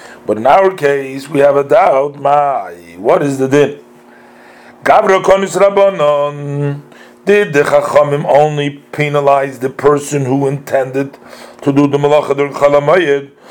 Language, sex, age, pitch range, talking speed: English, male, 40-59, 140-150 Hz, 140 wpm